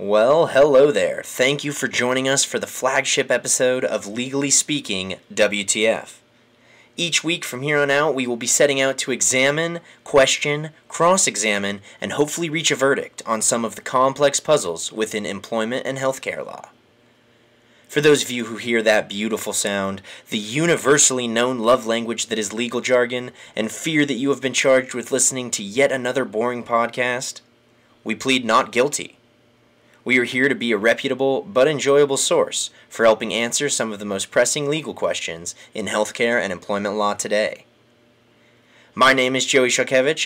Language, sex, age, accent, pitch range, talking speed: English, male, 20-39, American, 115-135 Hz, 170 wpm